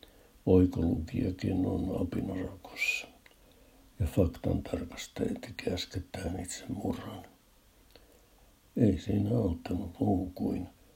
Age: 60-79